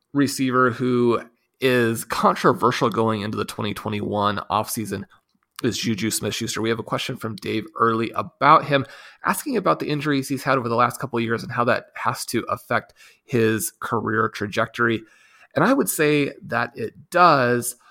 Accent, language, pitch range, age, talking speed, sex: American, English, 110-135 Hz, 30-49, 160 wpm, male